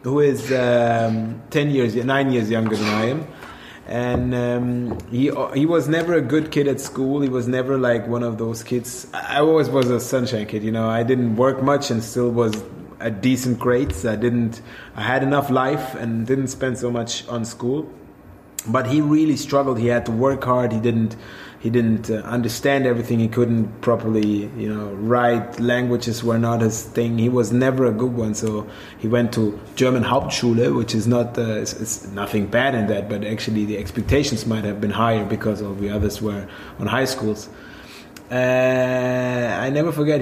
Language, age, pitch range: English, 20-39, 115-135 Hz